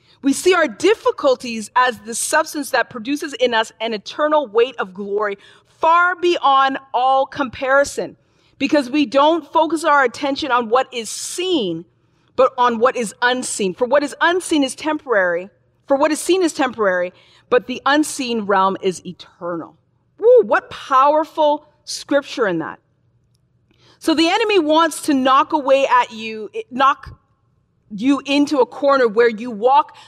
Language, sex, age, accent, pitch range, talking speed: English, female, 40-59, American, 215-290 Hz, 150 wpm